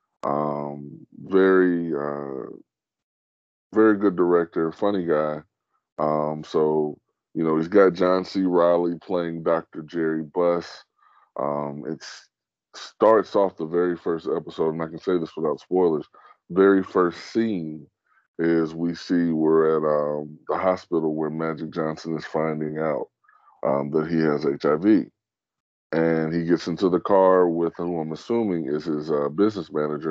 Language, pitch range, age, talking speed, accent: English, 75-90 Hz, 20-39, 145 wpm, American